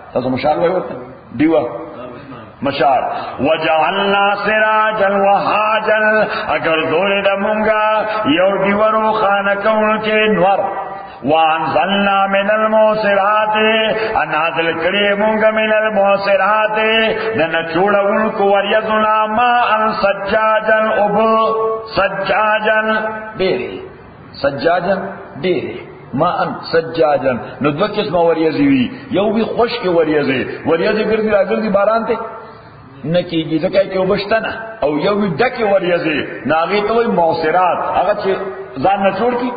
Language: Urdu